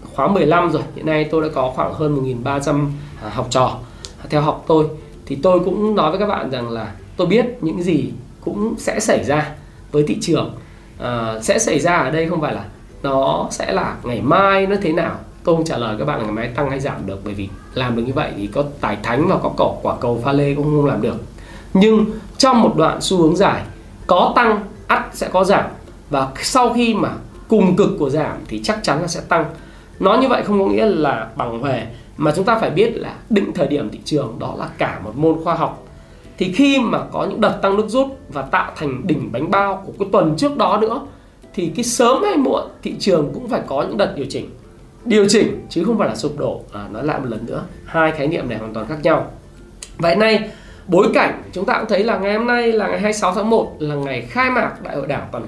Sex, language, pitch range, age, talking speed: male, Vietnamese, 135-205 Hz, 20-39, 240 wpm